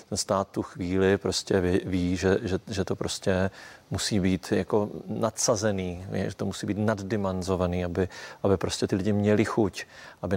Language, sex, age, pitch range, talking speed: Czech, male, 30-49, 95-105 Hz, 170 wpm